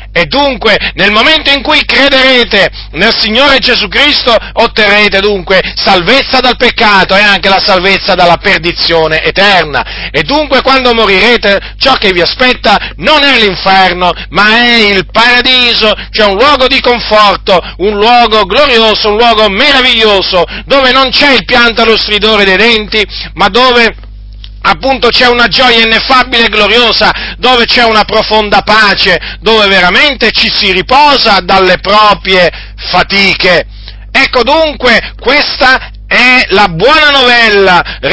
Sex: male